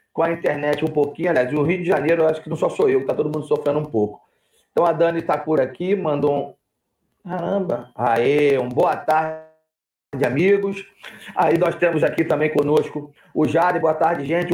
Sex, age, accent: male, 40-59, Brazilian